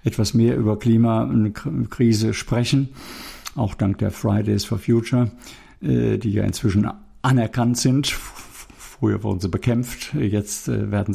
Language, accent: German, German